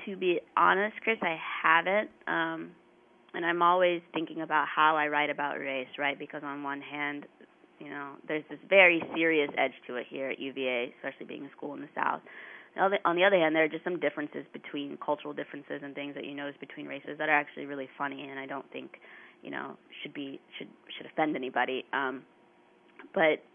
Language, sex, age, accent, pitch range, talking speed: English, female, 20-39, American, 145-165 Hz, 205 wpm